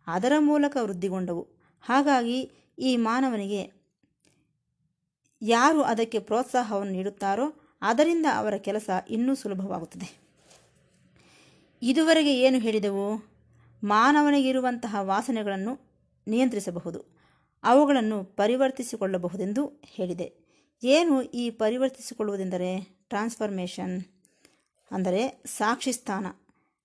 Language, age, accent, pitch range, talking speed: Kannada, 20-39, native, 195-260 Hz, 65 wpm